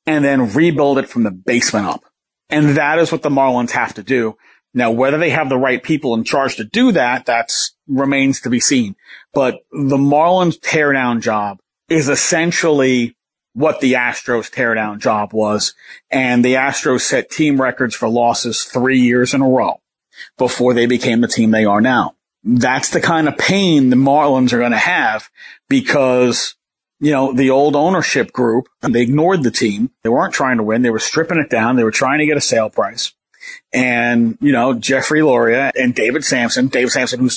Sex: male